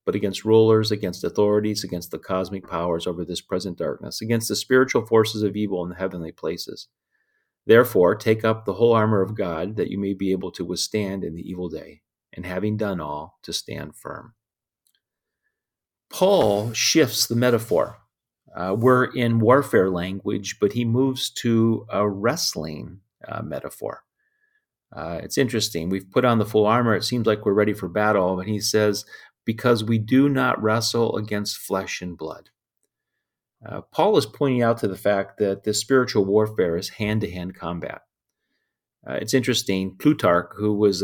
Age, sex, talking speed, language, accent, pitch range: 40-59, male, 170 wpm, English, American, 95-120 Hz